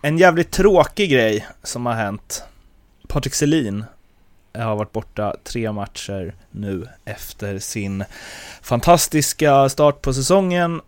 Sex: male